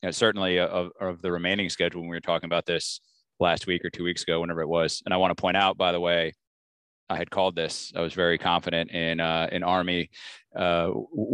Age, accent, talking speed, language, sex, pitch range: 20-39, American, 245 wpm, English, male, 90-115 Hz